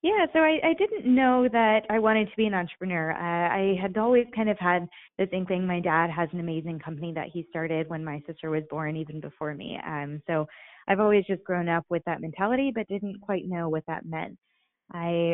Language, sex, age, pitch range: English, female, 20-39, 155-190 Hz